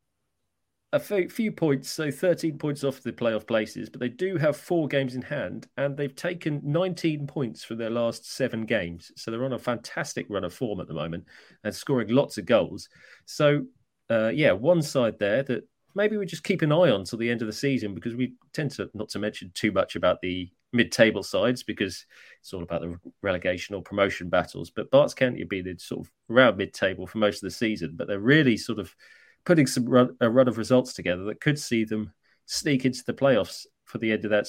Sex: male